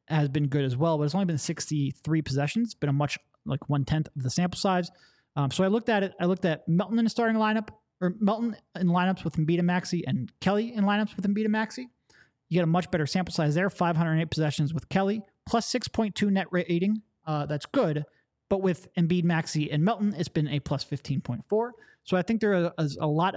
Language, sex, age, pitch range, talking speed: English, male, 20-39, 150-190 Hz, 225 wpm